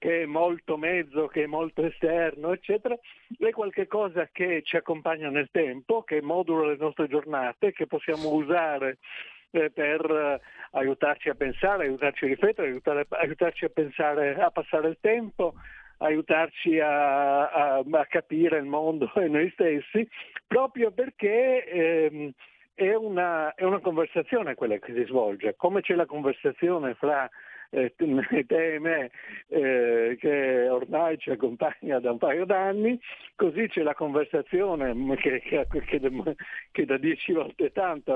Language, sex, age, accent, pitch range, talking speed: Italian, male, 60-79, native, 145-195 Hz, 130 wpm